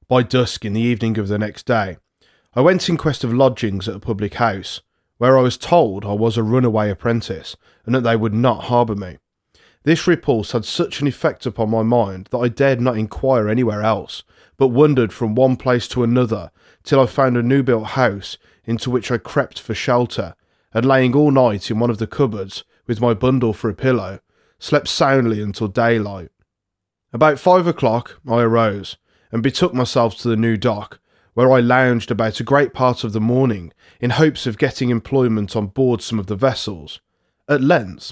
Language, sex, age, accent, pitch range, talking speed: English, male, 20-39, British, 110-130 Hz, 195 wpm